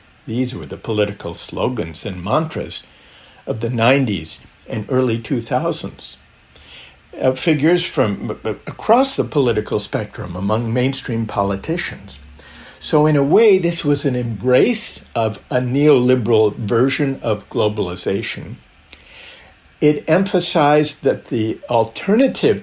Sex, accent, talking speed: male, American, 110 wpm